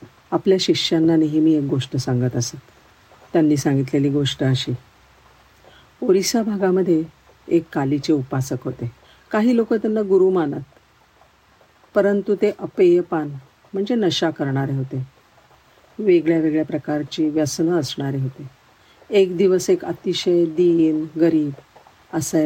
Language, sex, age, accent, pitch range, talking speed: Marathi, female, 50-69, native, 145-185 Hz, 110 wpm